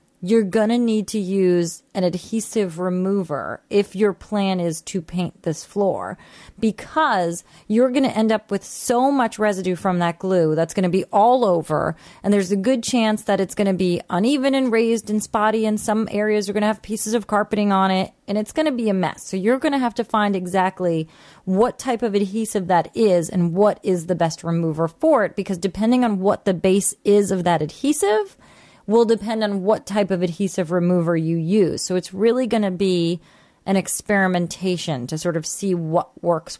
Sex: female